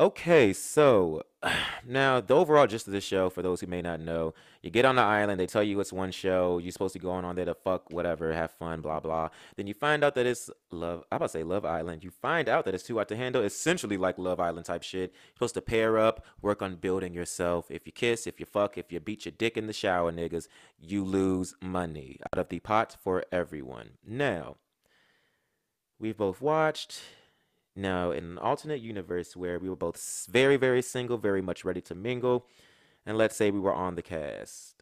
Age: 20-39